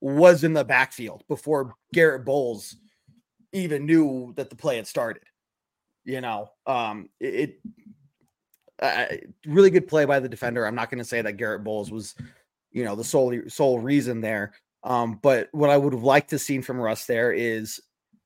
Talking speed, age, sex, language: 180 wpm, 30-49, male, English